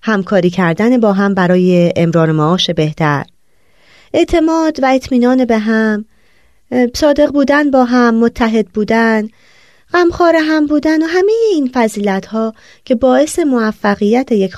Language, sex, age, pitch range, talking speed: Persian, female, 30-49, 190-280 Hz, 125 wpm